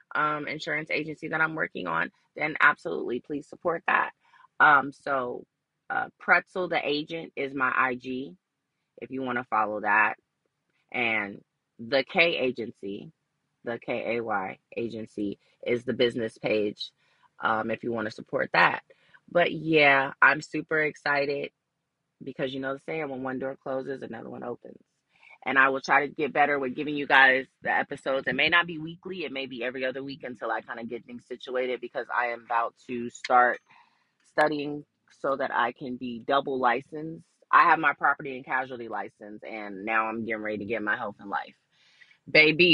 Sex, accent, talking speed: female, American, 175 wpm